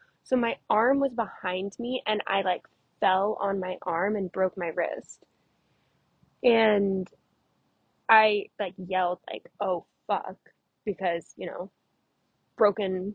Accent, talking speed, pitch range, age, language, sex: American, 130 wpm, 195-255 Hz, 20-39, English, female